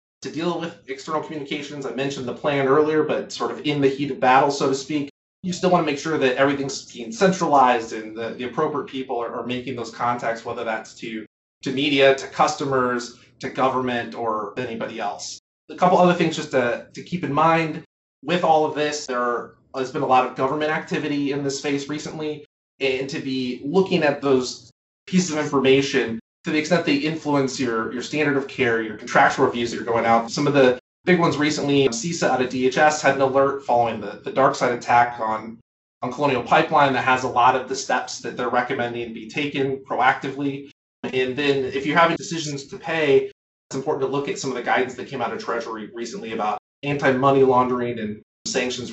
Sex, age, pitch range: male, 30-49, 120-150 Hz